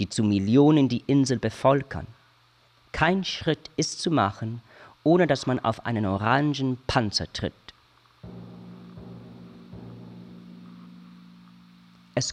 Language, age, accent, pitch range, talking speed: German, 40-59, German, 95-140 Hz, 95 wpm